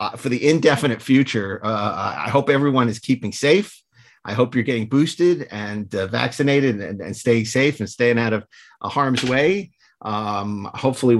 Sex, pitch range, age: male, 110-145 Hz, 40-59